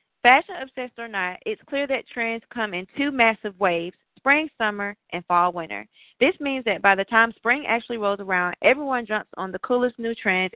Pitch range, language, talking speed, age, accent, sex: 190-245 Hz, English, 195 wpm, 20-39, American, female